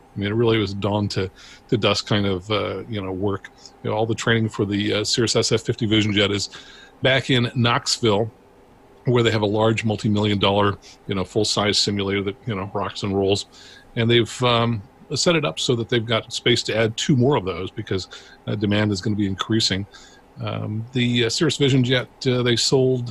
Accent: American